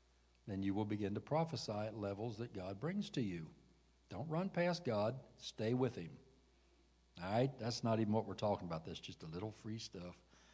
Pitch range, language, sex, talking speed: 85-130 Hz, English, male, 205 wpm